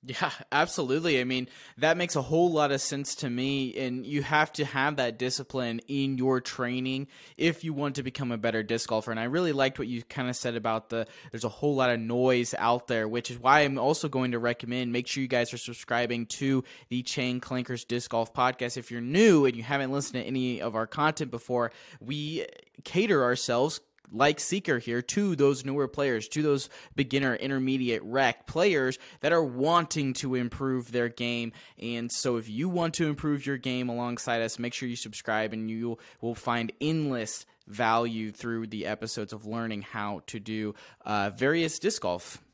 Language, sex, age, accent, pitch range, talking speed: English, male, 20-39, American, 120-145 Hz, 200 wpm